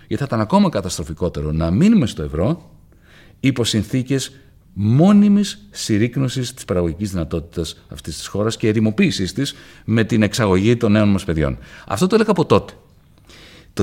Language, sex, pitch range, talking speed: Greek, male, 85-115 Hz, 150 wpm